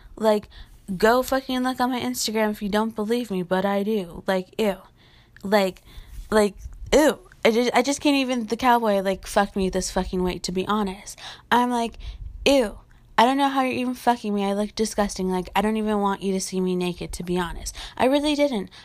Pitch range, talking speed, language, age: 195-250 Hz, 210 wpm, English, 20-39